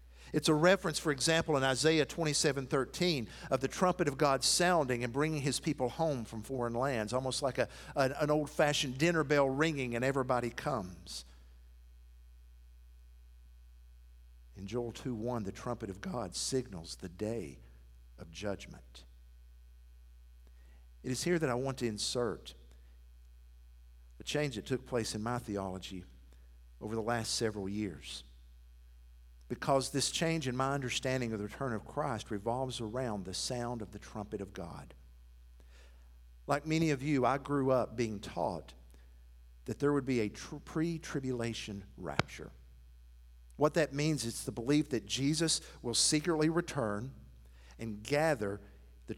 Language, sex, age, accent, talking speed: English, male, 50-69, American, 145 wpm